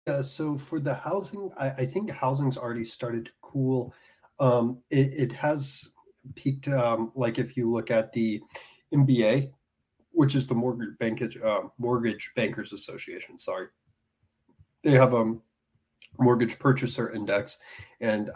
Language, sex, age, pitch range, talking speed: English, male, 30-49, 110-130 Hz, 140 wpm